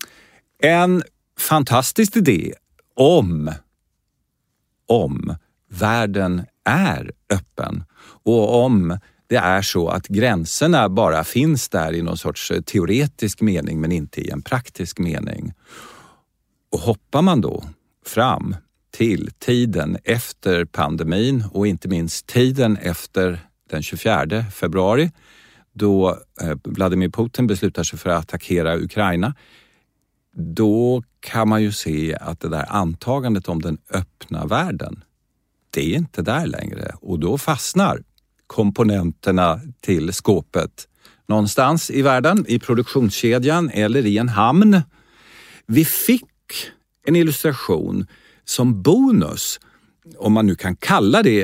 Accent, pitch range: native, 90-125 Hz